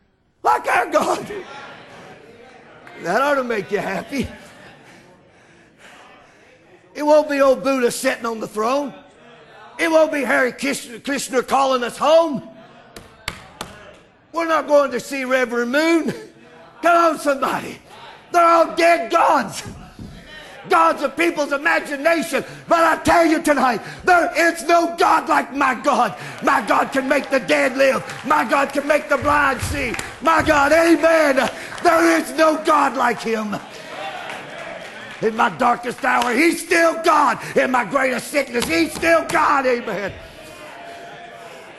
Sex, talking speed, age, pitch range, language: male, 135 wpm, 50-69, 255-325 Hz, English